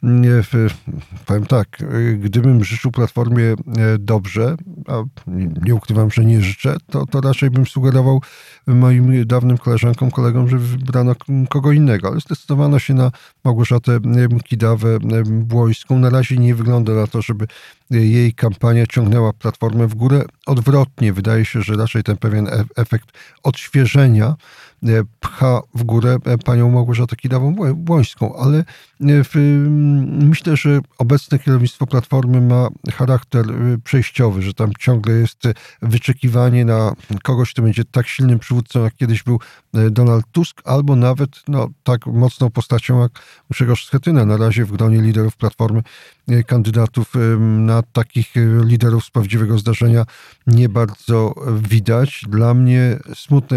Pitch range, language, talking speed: 115-130 Hz, Polish, 130 wpm